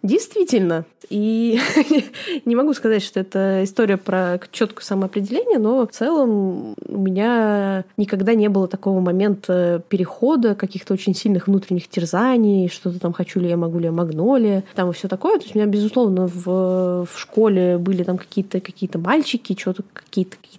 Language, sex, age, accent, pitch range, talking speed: Russian, female, 20-39, native, 185-220 Hz, 155 wpm